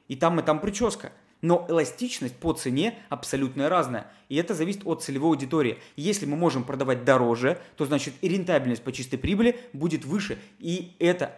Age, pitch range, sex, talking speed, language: 20-39, 130-165 Hz, male, 175 wpm, Russian